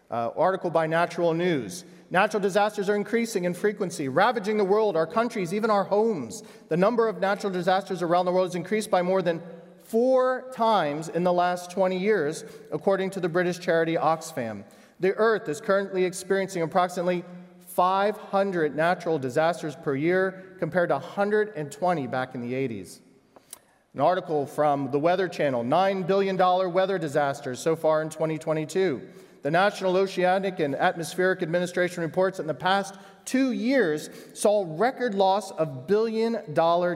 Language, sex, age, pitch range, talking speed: English, male, 40-59, 165-200 Hz, 155 wpm